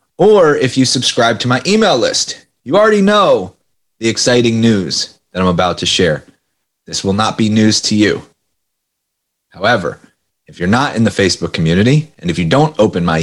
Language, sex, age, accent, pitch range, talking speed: English, male, 30-49, American, 95-130 Hz, 180 wpm